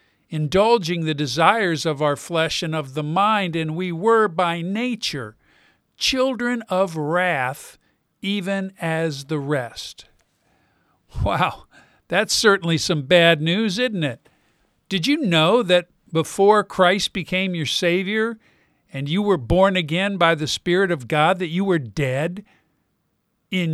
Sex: male